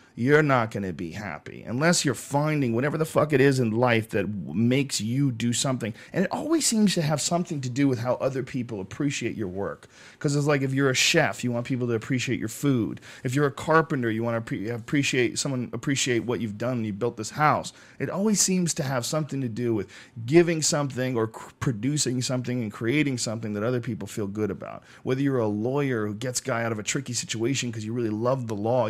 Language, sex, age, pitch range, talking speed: English, male, 40-59, 115-140 Hz, 235 wpm